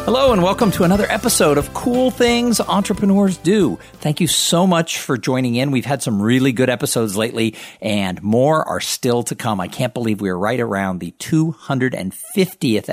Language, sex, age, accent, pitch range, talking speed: English, male, 50-69, American, 115-180 Hz, 185 wpm